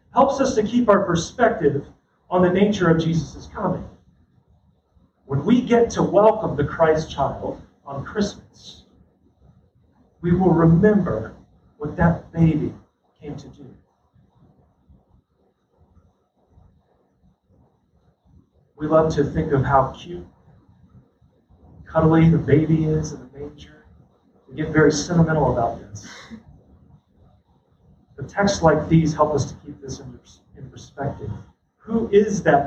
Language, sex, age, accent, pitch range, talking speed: English, male, 40-59, American, 140-200 Hz, 120 wpm